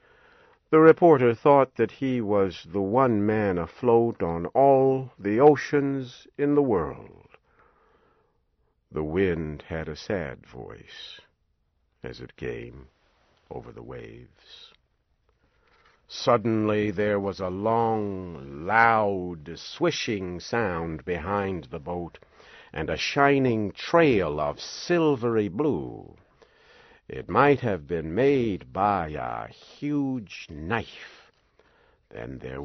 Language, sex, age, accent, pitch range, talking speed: English, male, 60-79, American, 90-140 Hz, 105 wpm